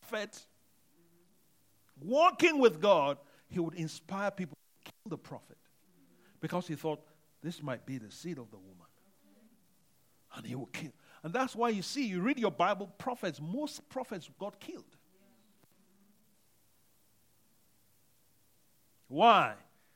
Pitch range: 145-220 Hz